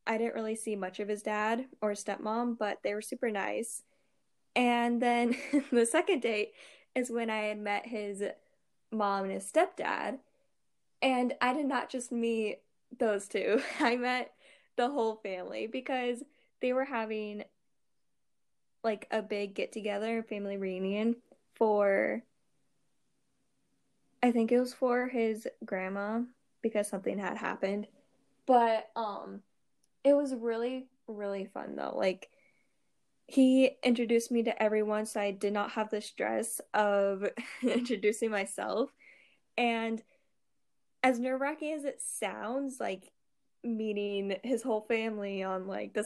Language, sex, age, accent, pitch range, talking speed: English, female, 10-29, American, 205-245 Hz, 135 wpm